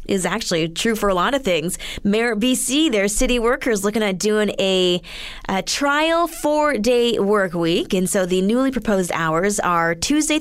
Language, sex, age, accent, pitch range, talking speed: English, female, 20-39, American, 190-260 Hz, 175 wpm